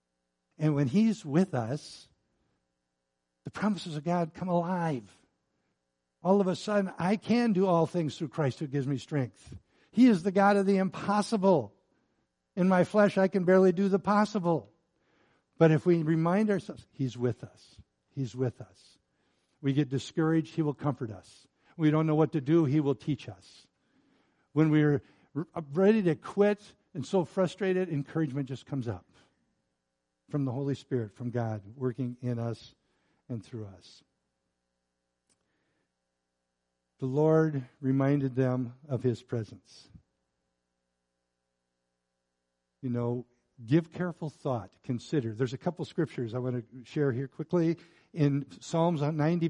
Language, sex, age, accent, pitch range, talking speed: English, male, 60-79, American, 110-165 Hz, 145 wpm